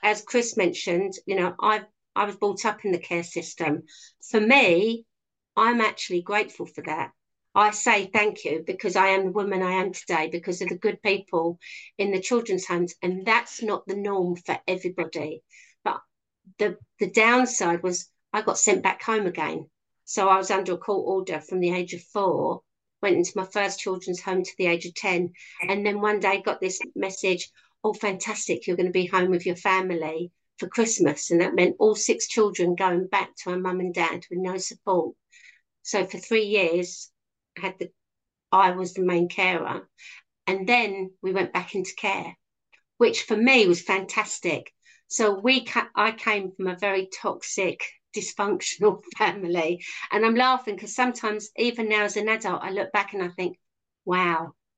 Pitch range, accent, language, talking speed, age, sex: 180-215 Hz, British, English, 185 wpm, 50-69, female